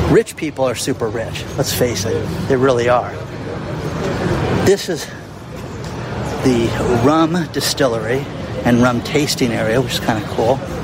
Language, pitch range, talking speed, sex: English, 125-165 Hz, 140 wpm, male